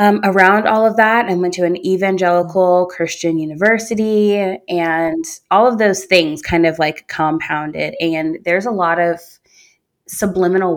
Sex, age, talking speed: female, 20-39, 150 wpm